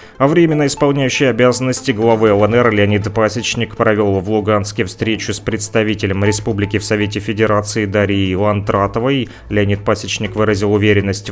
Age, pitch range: 30-49, 105-120 Hz